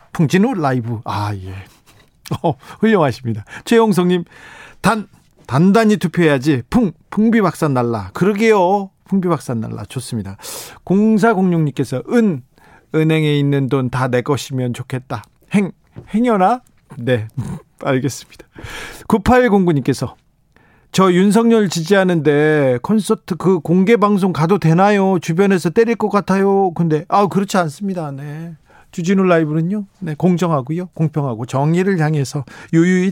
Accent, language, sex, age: native, Korean, male, 40-59